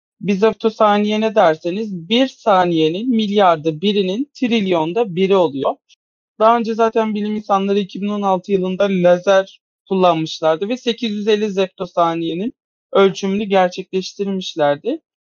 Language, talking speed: Turkish, 95 wpm